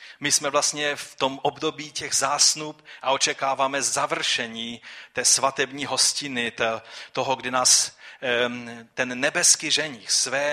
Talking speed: 120 wpm